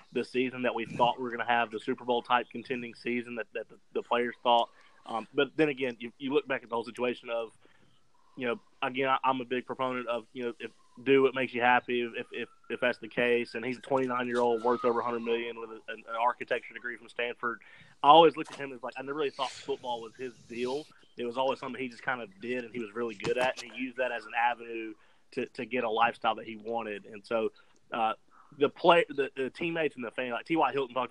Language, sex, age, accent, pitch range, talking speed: English, male, 30-49, American, 115-130 Hz, 260 wpm